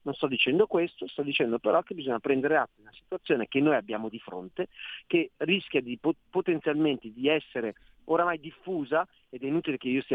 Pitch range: 120-160 Hz